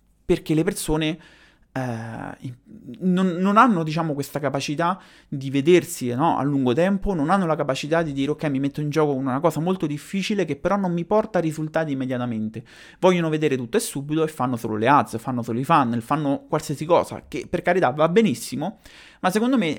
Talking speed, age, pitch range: 190 wpm, 30-49, 130-180 Hz